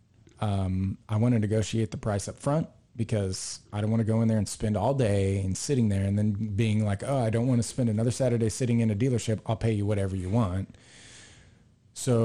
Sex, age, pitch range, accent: male, 30-49, 105-120 Hz, American